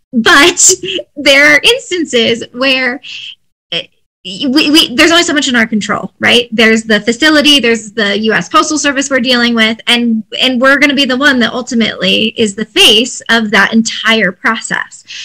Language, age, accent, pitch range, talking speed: English, 20-39, American, 215-270 Hz, 170 wpm